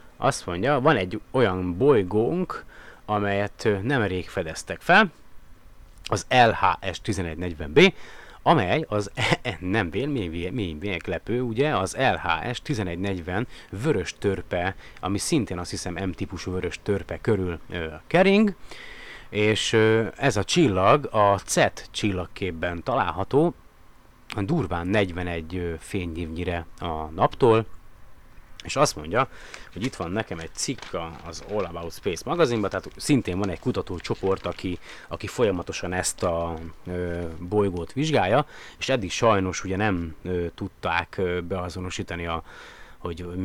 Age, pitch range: 30-49, 90-110 Hz